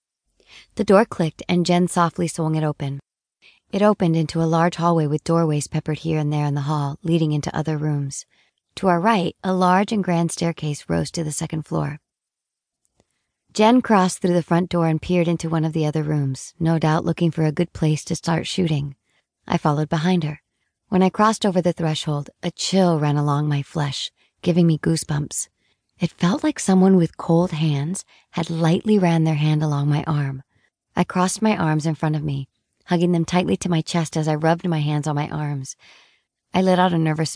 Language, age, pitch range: English, 40-59, 150-180 Hz